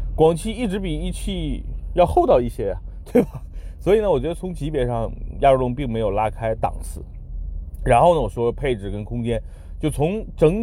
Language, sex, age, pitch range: Chinese, male, 30-49, 105-150 Hz